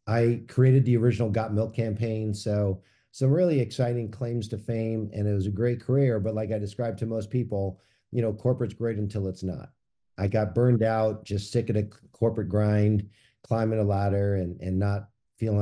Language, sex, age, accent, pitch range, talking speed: English, male, 50-69, American, 105-125 Hz, 195 wpm